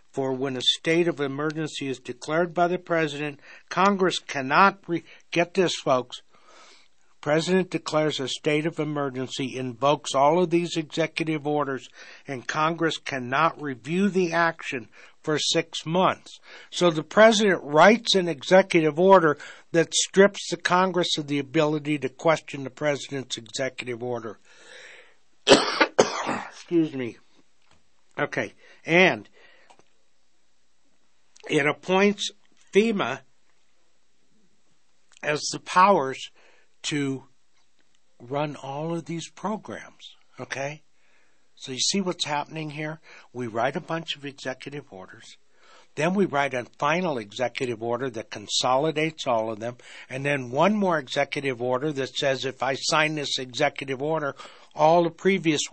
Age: 60-79